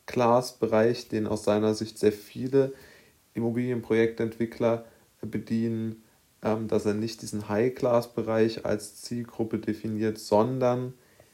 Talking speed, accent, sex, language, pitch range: 100 wpm, German, male, German, 105-120 Hz